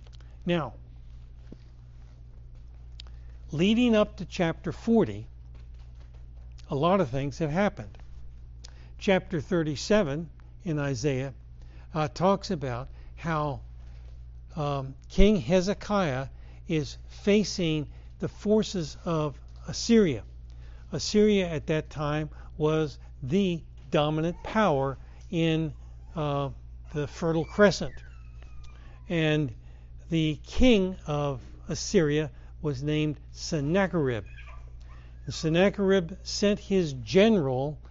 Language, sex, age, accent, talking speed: English, male, 60-79, American, 85 wpm